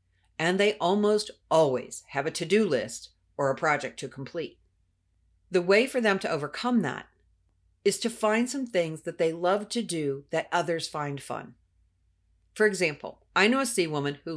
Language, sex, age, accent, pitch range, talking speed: English, female, 50-69, American, 140-230 Hz, 175 wpm